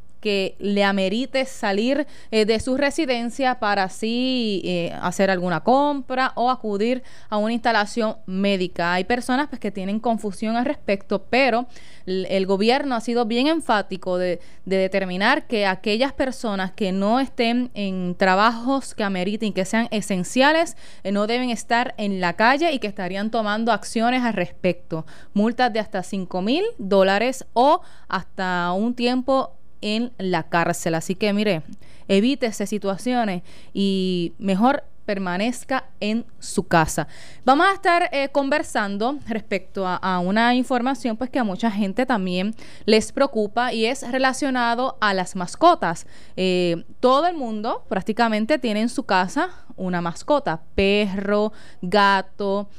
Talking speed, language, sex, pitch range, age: 145 wpm, Spanish, female, 190-250 Hz, 20-39